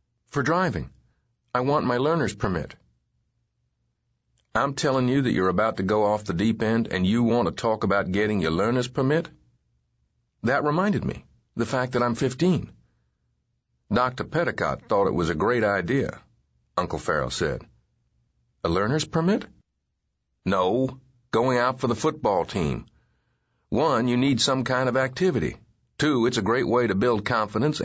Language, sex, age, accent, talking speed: English, male, 50-69, American, 155 wpm